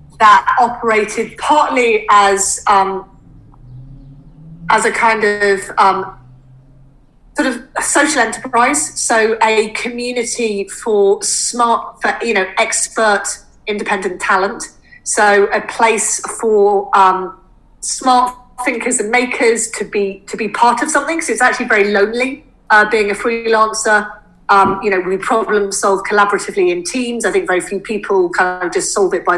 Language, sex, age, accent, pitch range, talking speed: English, female, 30-49, British, 200-245 Hz, 145 wpm